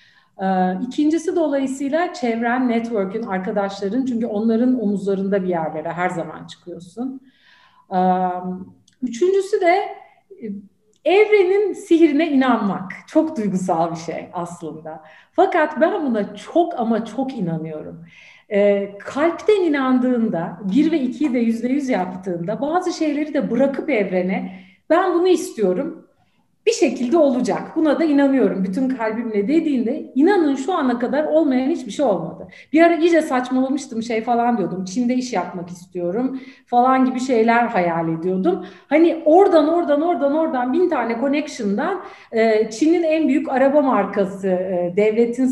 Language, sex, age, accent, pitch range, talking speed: Turkish, female, 50-69, native, 195-305 Hz, 125 wpm